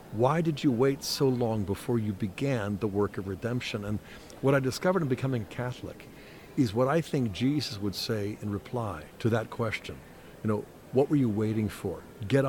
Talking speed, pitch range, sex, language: 190 wpm, 105-130 Hz, male, English